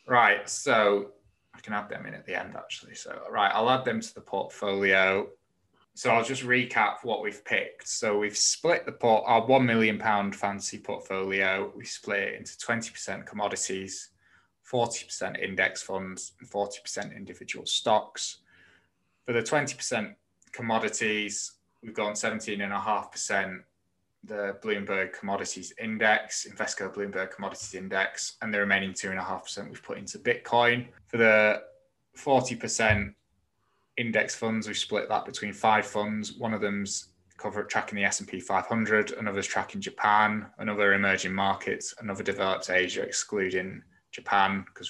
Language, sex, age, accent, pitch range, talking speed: English, male, 20-39, British, 95-110 Hz, 135 wpm